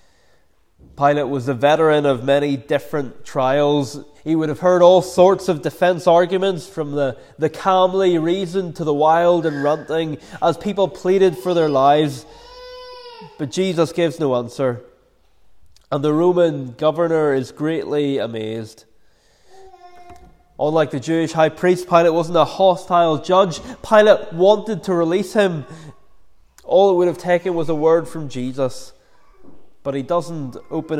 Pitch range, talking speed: 140-175 Hz, 145 wpm